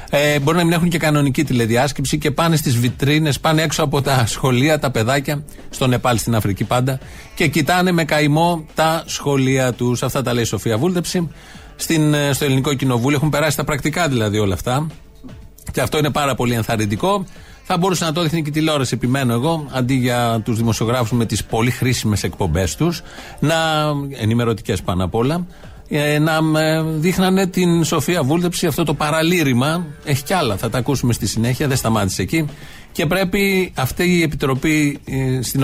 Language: Greek